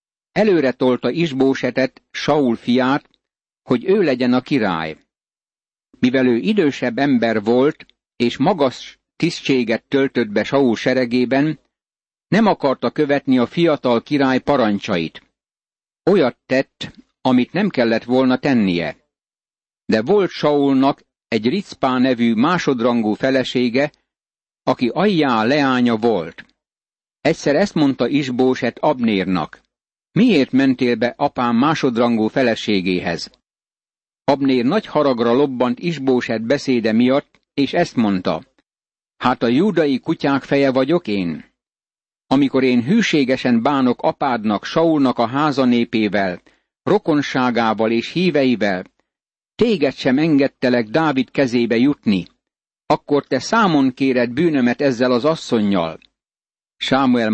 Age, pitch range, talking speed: 60-79, 120-145 Hz, 105 wpm